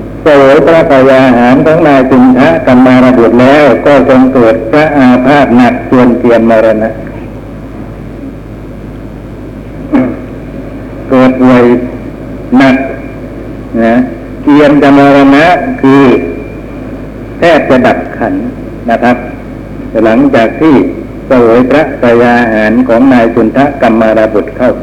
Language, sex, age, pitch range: Thai, male, 60-79, 120-135 Hz